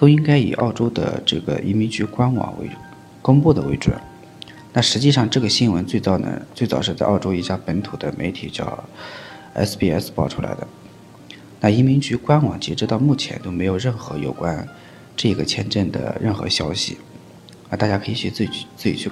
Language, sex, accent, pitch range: Chinese, male, native, 95-125 Hz